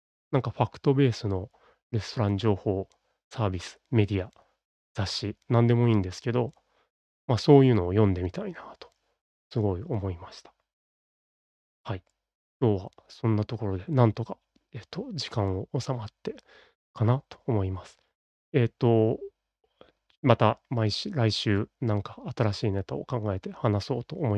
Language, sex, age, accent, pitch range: Japanese, male, 30-49, native, 100-120 Hz